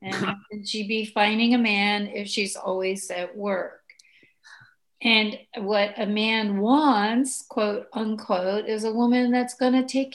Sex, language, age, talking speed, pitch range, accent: female, English, 50-69, 150 wpm, 195-240 Hz, American